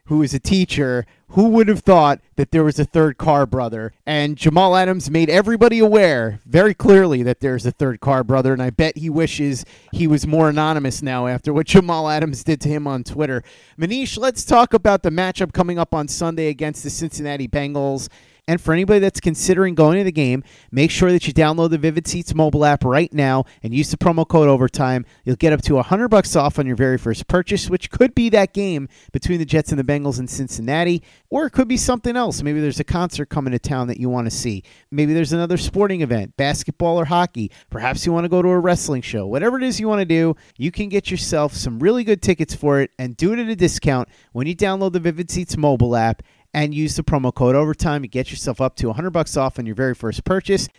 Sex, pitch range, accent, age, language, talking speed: male, 135-175 Hz, American, 30-49, English, 235 wpm